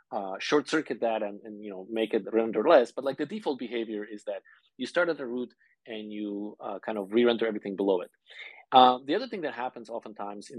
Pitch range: 105-135 Hz